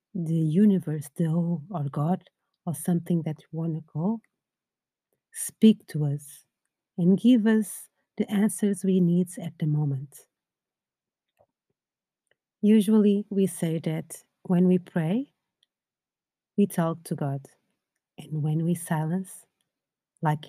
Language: English